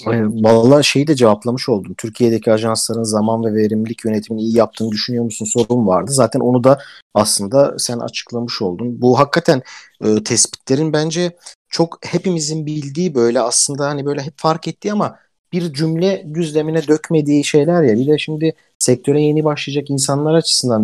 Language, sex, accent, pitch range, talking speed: Turkish, male, native, 110-145 Hz, 160 wpm